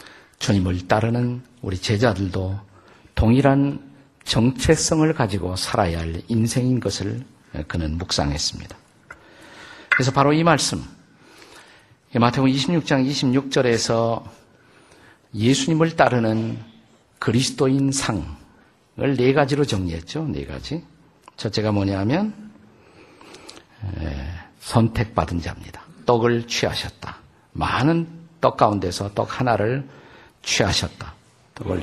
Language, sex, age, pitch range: Korean, male, 50-69, 100-135 Hz